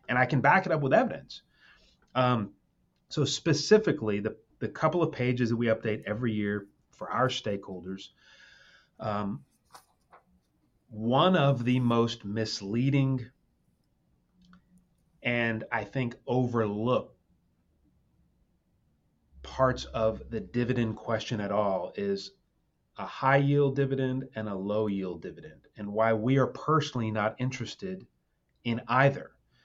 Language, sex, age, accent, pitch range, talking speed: English, male, 30-49, American, 105-135 Hz, 115 wpm